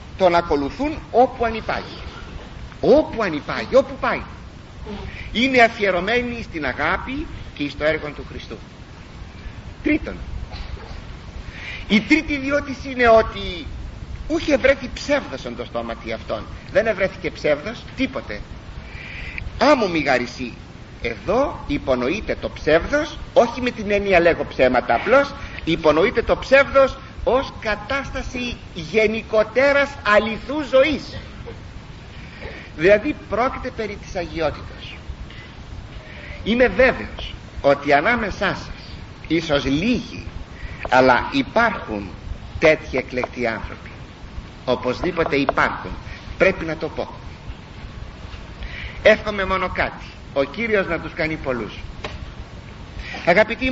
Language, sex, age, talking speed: Greek, male, 50-69, 100 wpm